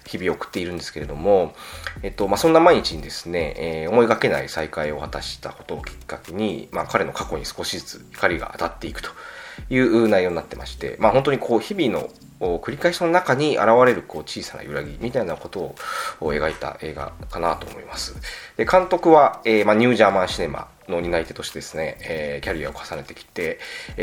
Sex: male